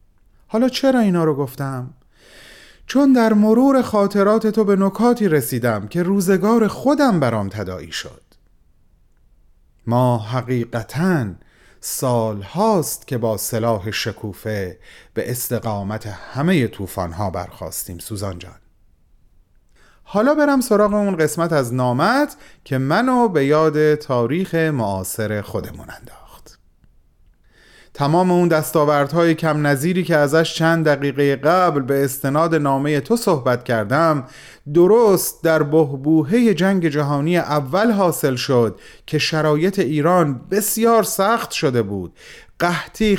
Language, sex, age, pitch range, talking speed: Persian, male, 40-59, 115-180 Hz, 115 wpm